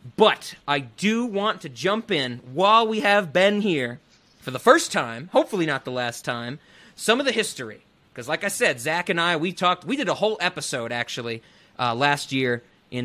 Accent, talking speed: American, 200 wpm